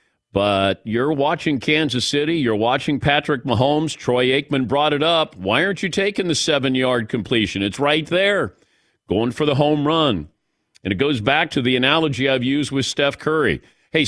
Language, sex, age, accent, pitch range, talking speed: English, male, 50-69, American, 120-155 Hz, 180 wpm